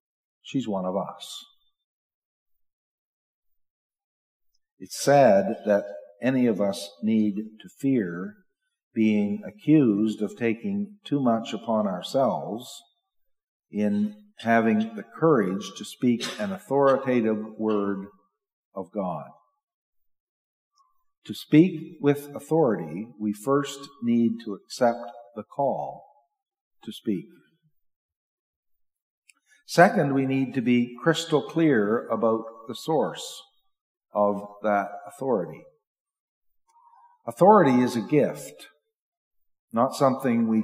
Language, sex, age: English, male, 50-69